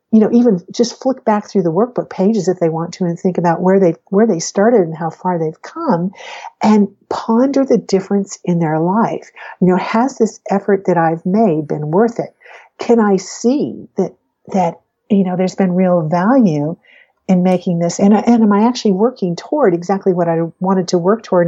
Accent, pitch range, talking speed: American, 175-220 Hz, 205 wpm